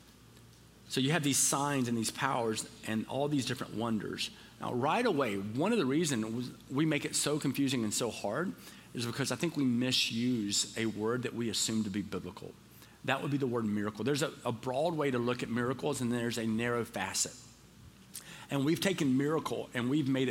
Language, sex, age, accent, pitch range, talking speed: English, male, 40-59, American, 120-170 Hz, 205 wpm